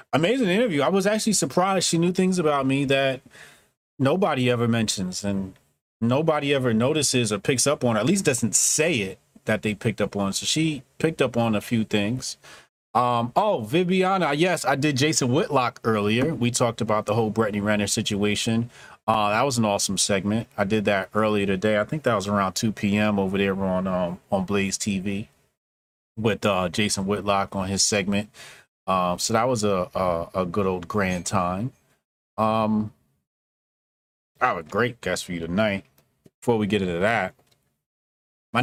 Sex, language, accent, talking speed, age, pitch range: male, English, American, 185 wpm, 30-49, 100-135 Hz